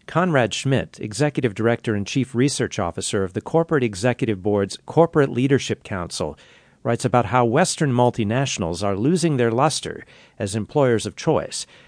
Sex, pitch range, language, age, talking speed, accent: male, 105-135 Hz, English, 50-69, 145 wpm, American